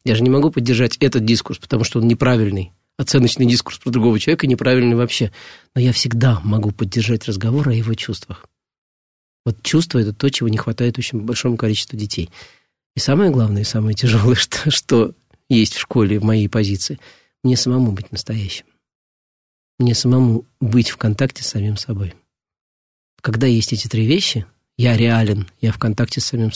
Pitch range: 110-135 Hz